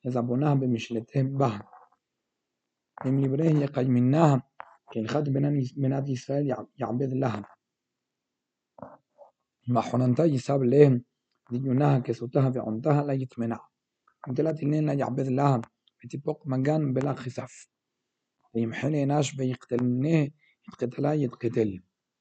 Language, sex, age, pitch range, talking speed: Hebrew, male, 40-59, 125-140 Hz, 95 wpm